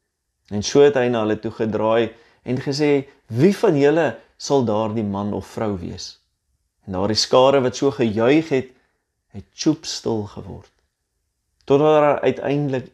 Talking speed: 160 wpm